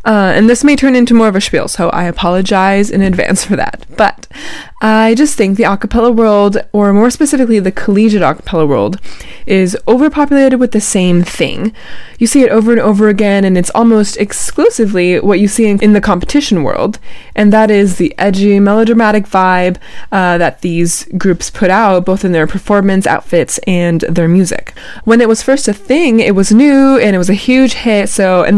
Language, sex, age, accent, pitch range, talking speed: English, female, 20-39, American, 185-225 Hz, 195 wpm